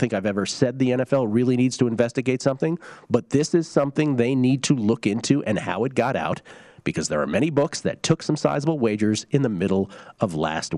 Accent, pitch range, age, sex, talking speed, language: American, 110-150 Hz, 40-59, male, 225 wpm, English